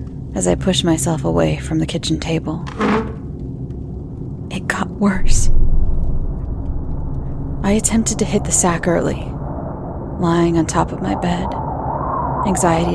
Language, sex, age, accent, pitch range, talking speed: English, female, 30-49, American, 155-180 Hz, 120 wpm